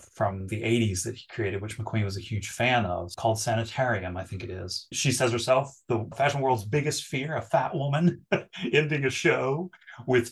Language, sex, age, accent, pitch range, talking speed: English, male, 30-49, American, 110-130 Hz, 200 wpm